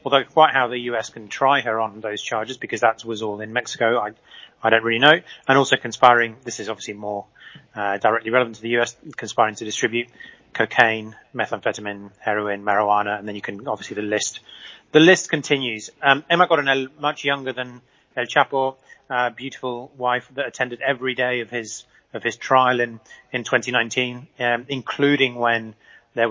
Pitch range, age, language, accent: 115-140 Hz, 30-49, English, British